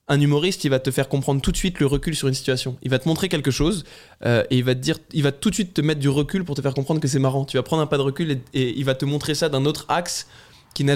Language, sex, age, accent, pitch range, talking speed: French, male, 20-39, French, 130-160 Hz, 340 wpm